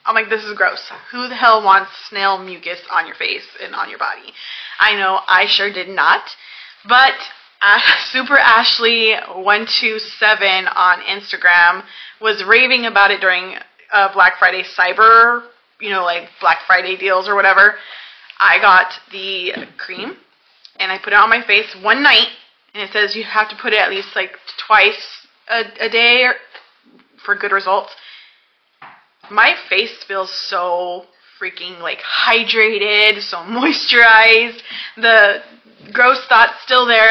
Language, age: English, 20-39